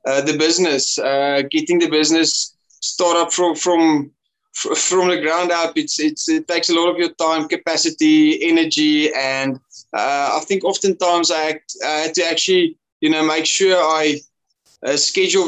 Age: 20-39